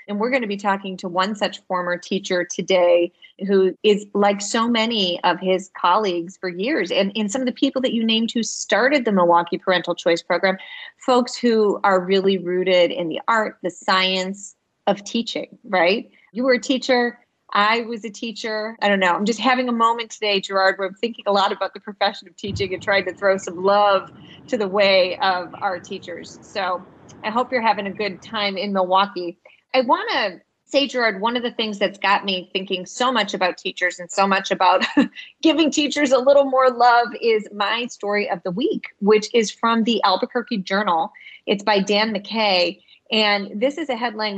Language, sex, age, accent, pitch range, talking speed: English, female, 30-49, American, 190-235 Hz, 200 wpm